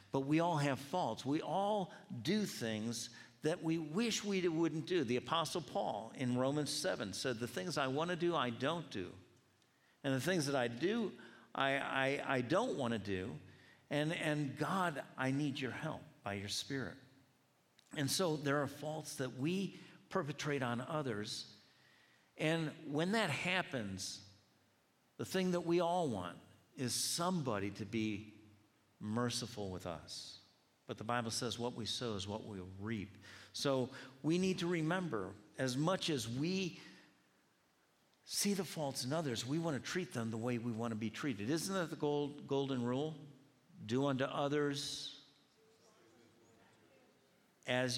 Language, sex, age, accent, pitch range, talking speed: English, male, 50-69, American, 115-160 Hz, 160 wpm